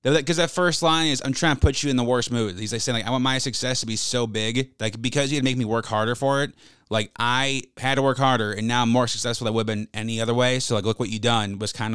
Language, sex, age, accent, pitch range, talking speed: English, male, 20-39, American, 110-130 Hz, 315 wpm